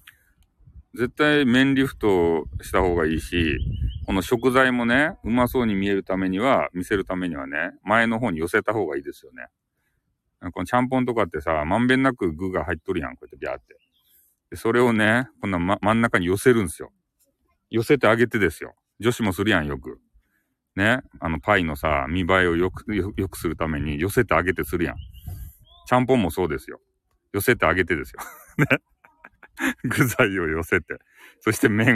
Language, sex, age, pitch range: Japanese, male, 40-59, 85-120 Hz